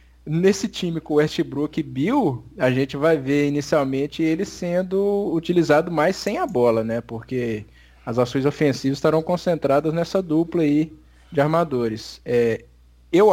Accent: Brazilian